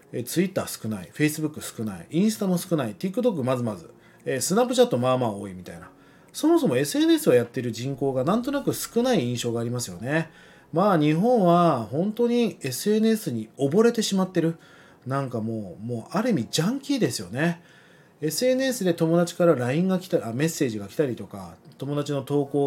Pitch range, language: 125-195 Hz, Japanese